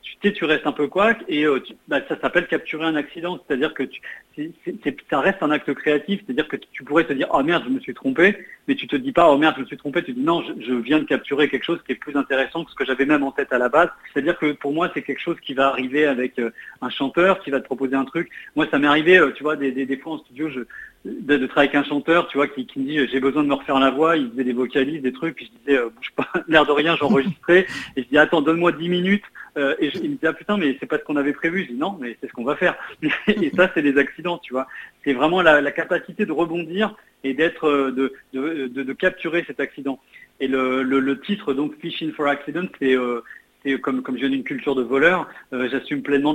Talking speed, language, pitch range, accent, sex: 300 wpm, French, 135-165 Hz, French, male